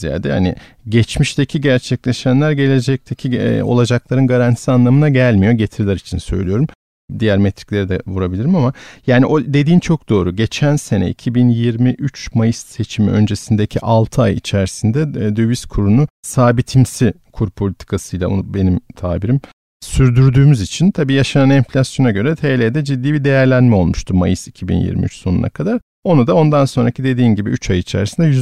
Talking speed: 130 wpm